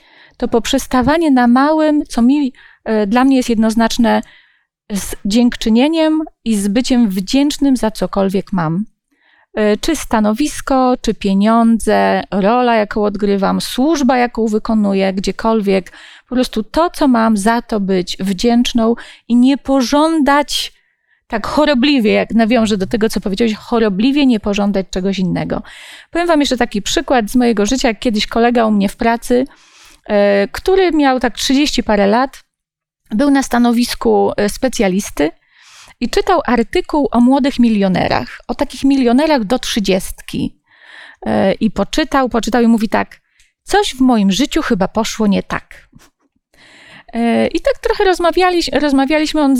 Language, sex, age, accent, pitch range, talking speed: Polish, female, 30-49, native, 215-275 Hz, 135 wpm